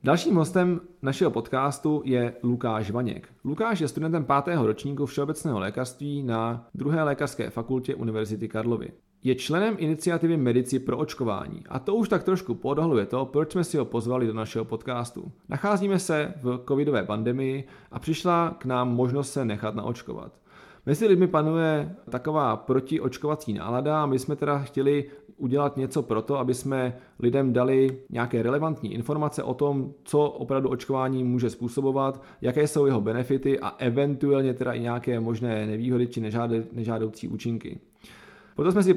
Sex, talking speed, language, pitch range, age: male, 155 wpm, Czech, 120-150 Hz, 30-49